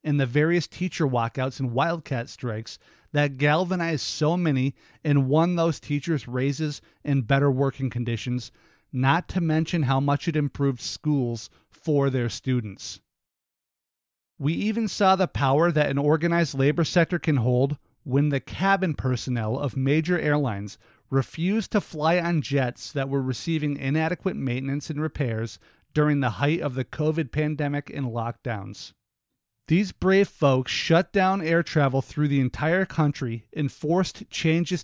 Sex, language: male, English